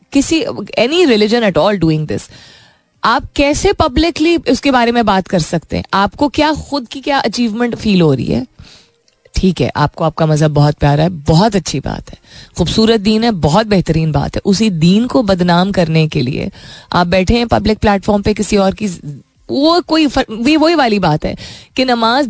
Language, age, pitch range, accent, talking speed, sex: Hindi, 20-39, 180-245 Hz, native, 180 wpm, female